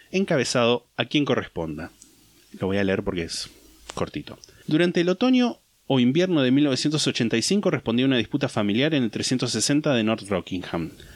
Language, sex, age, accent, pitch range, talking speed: Spanish, male, 30-49, Argentinian, 110-155 Hz, 155 wpm